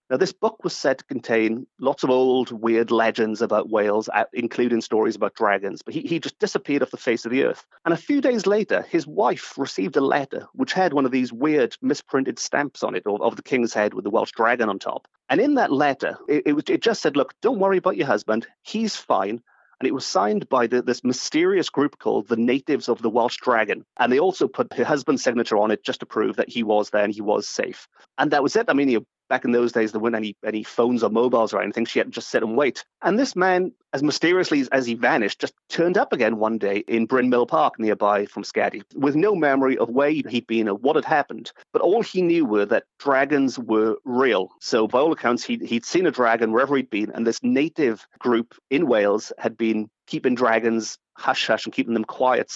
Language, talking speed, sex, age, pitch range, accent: English, 235 wpm, male, 30-49, 115-155 Hz, British